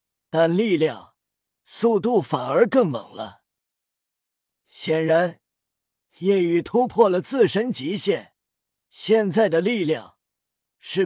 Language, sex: Chinese, male